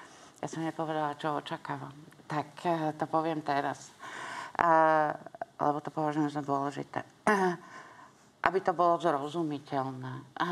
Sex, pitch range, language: female, 145-170 Hz, Slovak